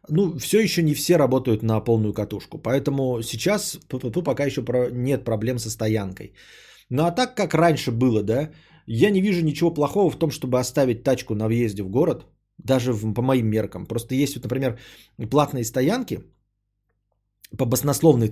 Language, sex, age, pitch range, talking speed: Bulgarian, male, 20-39, 110-145 Hz, 170 wpm